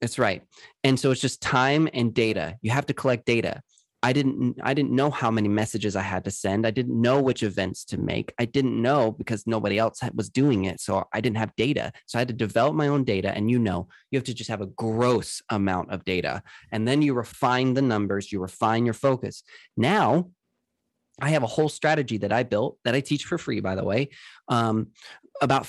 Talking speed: 230 wpm